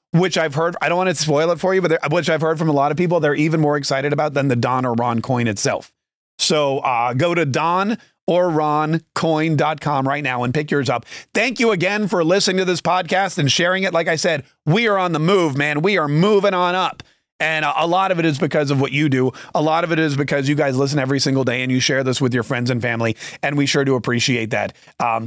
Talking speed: 255 wpm